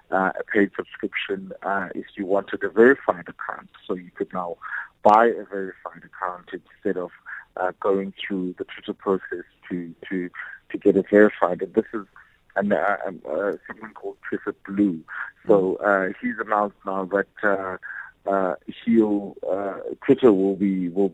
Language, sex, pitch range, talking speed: English, male, 95-105 Hz, 160 wpm